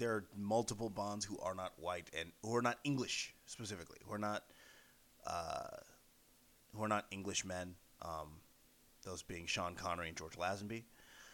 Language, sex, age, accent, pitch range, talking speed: English, male, 30-49, American, 95-125 Hz, 170 wpm